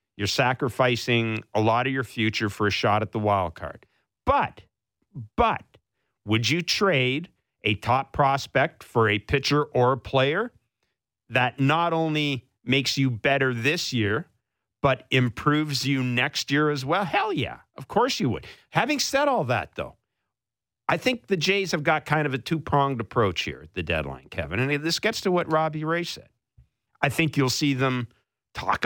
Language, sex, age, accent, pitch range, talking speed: English, male, 50-69, American, 110-145 Hz, 175 wpm